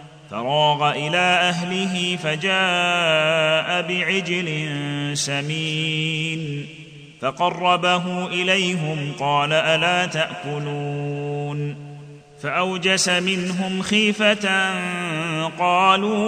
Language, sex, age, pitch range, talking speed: Arabic, male, 30-49, 145-180 Hz, 55 wpm